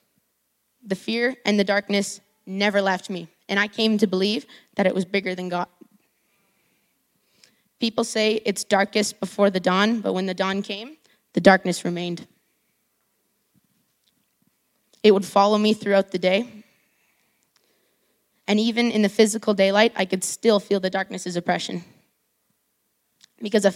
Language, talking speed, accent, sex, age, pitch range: English, 140 wpm, American, female, 20-39, 190-225 Hz